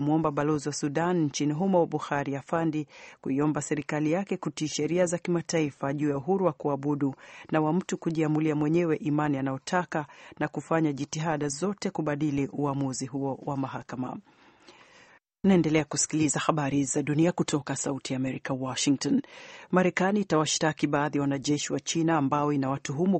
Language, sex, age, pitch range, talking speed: Swahili, female, 40-59, 140-165 Hz, 140 wpm